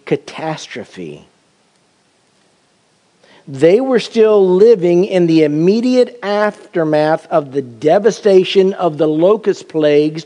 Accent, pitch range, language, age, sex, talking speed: American, 145-190 Hz, English, 50-69, male, 95 wpm